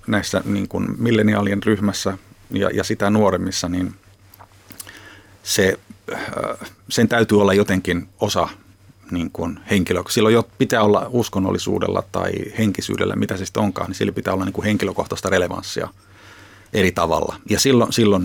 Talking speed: 130 wpm